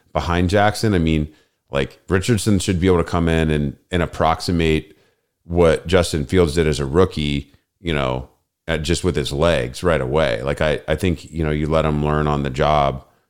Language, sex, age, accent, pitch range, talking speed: English, male, 30-49, American, 75-85 Hz, 200 wpm